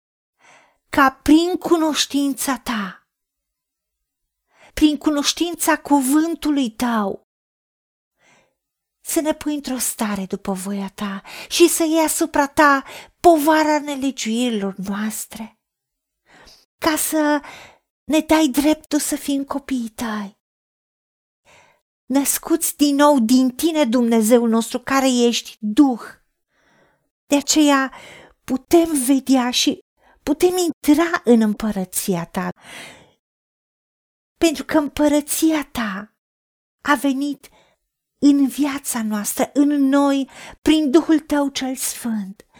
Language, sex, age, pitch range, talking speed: Romanian, female, 40-59, 235-300 Hz, 95 wpm